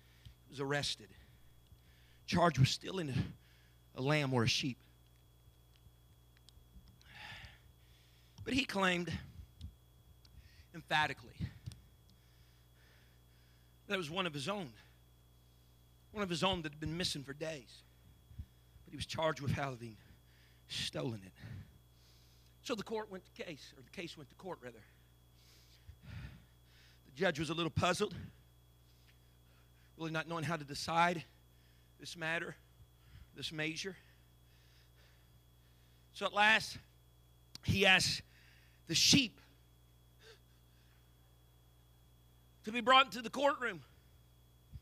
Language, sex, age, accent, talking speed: English, male, 40-59, American, 110 wpm